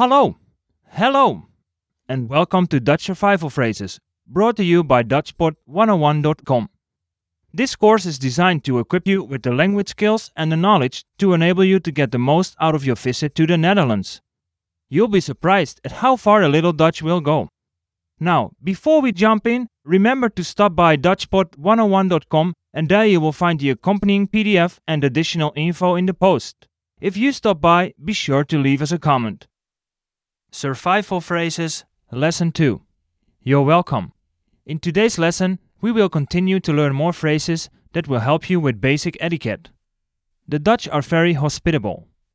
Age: 30-49